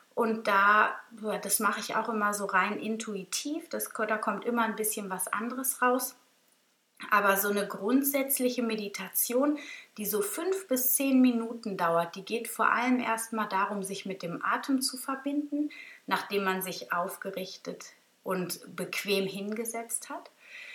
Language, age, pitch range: German, 30-49, 195-245 Hz